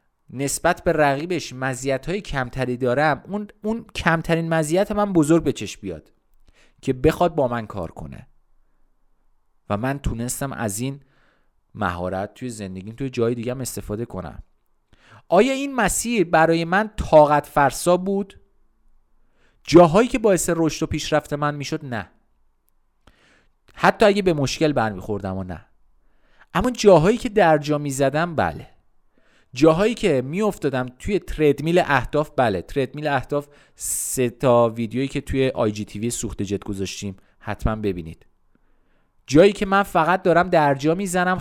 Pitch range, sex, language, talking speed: 110-160 Hz, male, Persian, 140 wpm